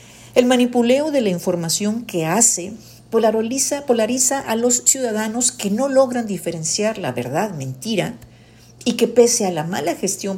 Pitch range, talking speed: 160-240 Hz, 145 wpm